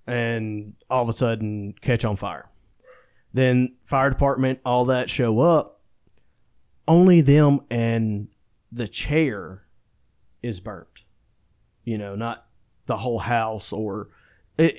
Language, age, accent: English, 30-49, American